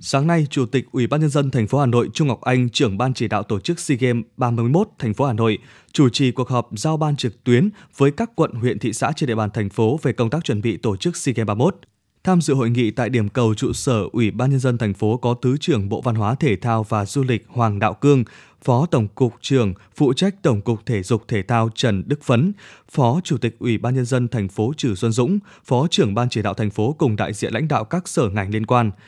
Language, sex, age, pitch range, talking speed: Vietnamese, male, 20-39, 115-145 Hz, 270 wpm